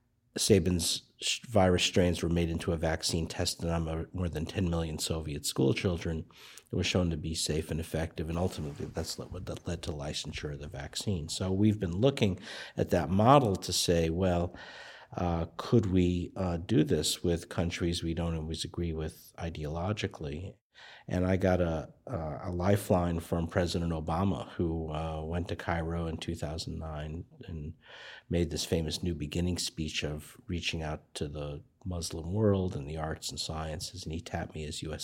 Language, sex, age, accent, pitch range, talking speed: English, male, 50-69, American, 80-90 Hz, 175 wpm